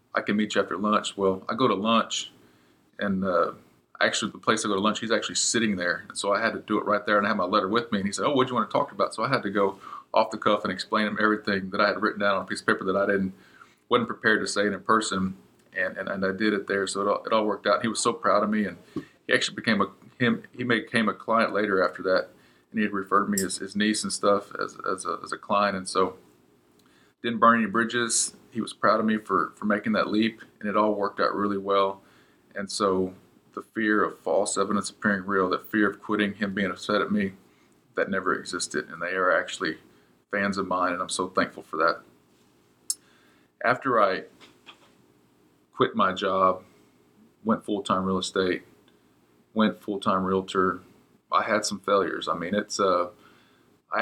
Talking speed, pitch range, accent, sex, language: 235 wpm, 80-105 Hz, American, male, English